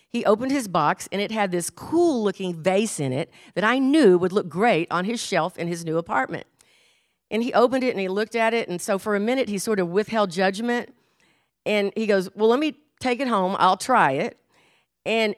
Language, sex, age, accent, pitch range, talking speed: English, female, 50-69, American, 195-260 Hz, 220 wpm